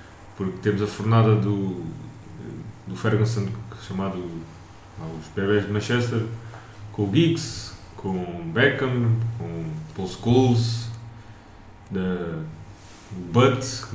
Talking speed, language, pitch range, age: 105 wpm, Portuguese, 100-115 Hz, 20-39